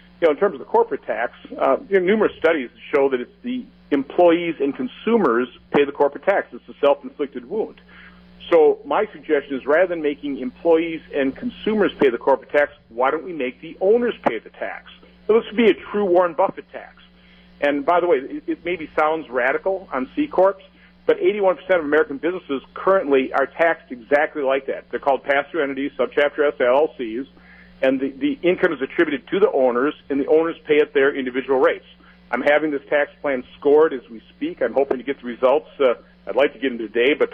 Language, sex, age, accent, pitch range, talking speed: English, male, 50-69, American, 135-185 Hz, 210 wpm